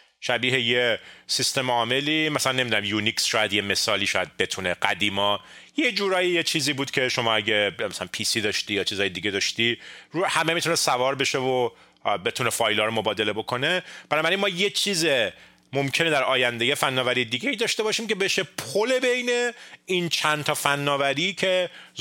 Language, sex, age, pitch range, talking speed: Persian, male, 30-49, 110-165 Hz, 165 wpm